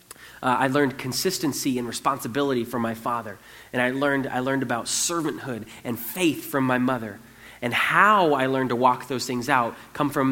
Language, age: English, 30-49